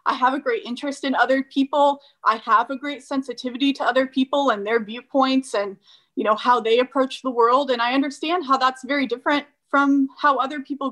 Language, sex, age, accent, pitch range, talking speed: English, female, 30-49, American, 220-275 Hz, 210 wpm